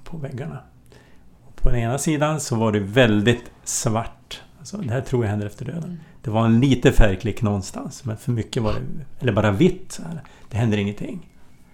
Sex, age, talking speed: male, 60-79, 200 wpm